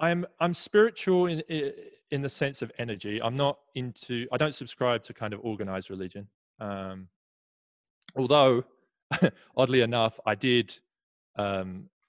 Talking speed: 135 wpm